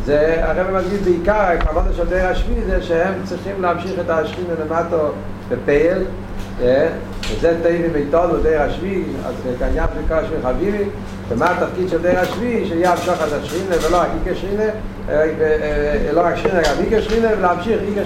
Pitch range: 115-190 Hz